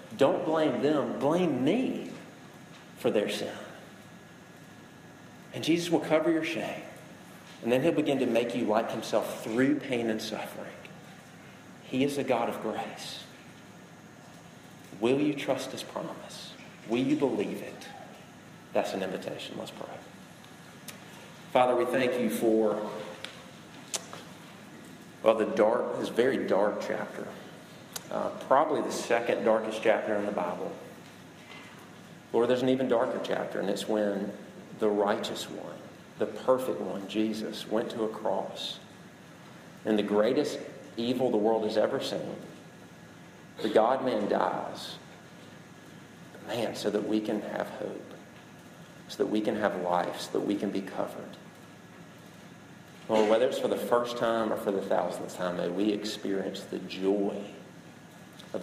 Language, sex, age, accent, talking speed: English, male, 40-59, American, 140 wpm